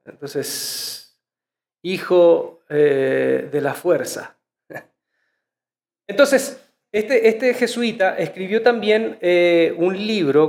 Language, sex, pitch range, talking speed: Spanish, male, 155-220 Hz, 85 wpm